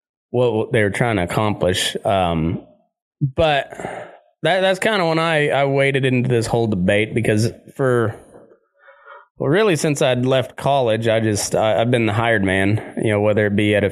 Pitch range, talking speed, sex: 105-135 Hz, 185 wpm, male